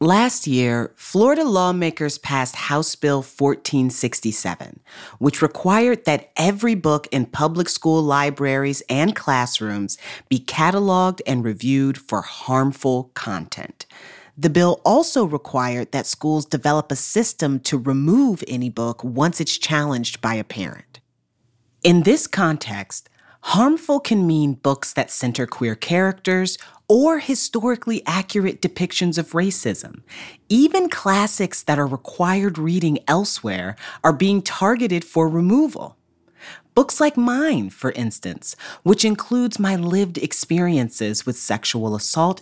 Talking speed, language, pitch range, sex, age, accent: 125 wpm, English, 125-195 Hz, female, 30-49, American